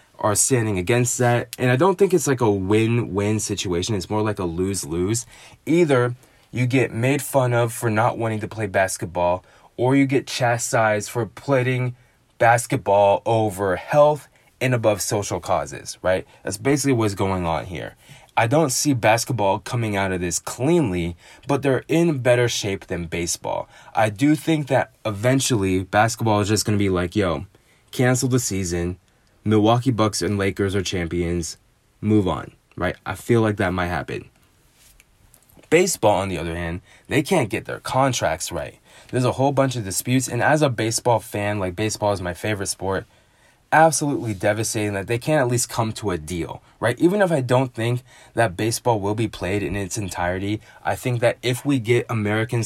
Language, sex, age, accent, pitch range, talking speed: English, male, 20-39, American, 95-125 Hz, 180 wpm